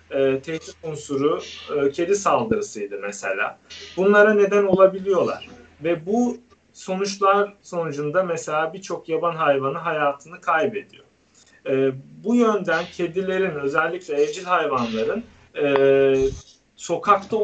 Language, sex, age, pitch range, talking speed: Turkish, male, 40-59, 160-210 Hz, 100 wpm